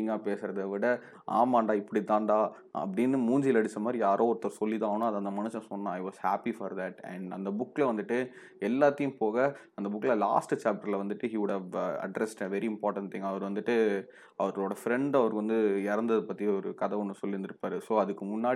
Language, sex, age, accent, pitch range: Tamil, male, 20-39, native, 105-125 Hz